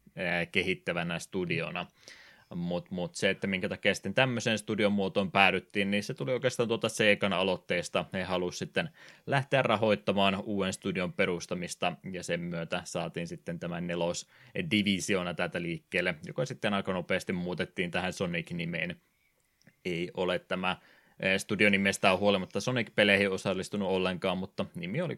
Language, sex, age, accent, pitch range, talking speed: Finnish, male, 20-39, native, 90-115 Hz, 130 wpm